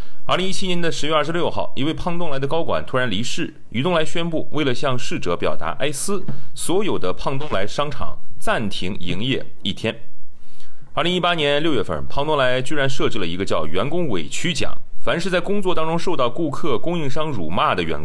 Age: 30-49